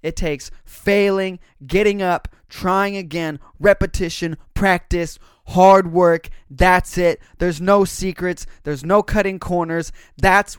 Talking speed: 120 wpm